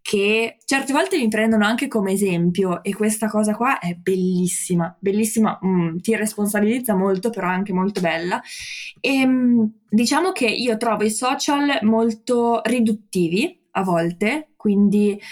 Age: 20-39